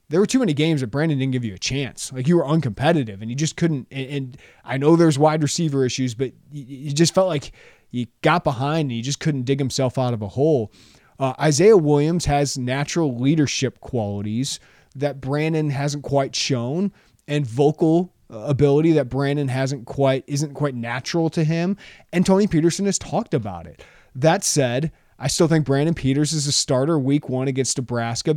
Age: 20-39